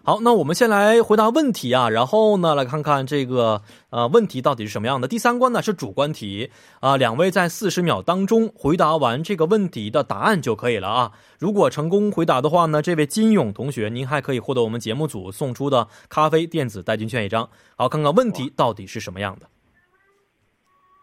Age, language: 20-39, Korean